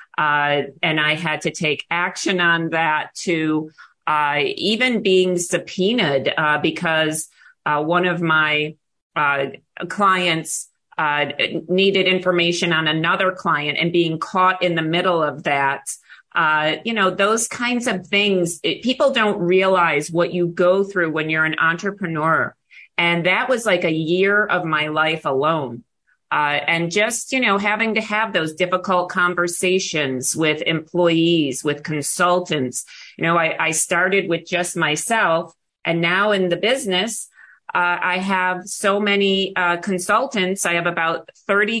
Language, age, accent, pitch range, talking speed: English, 40-59, American, 160-190 Hz, 150 wpm